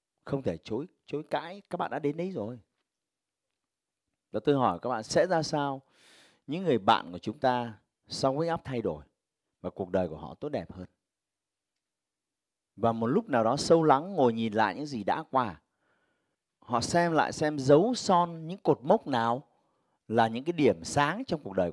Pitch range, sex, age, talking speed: 110-160 Hz, male, 30-49, 195 wpm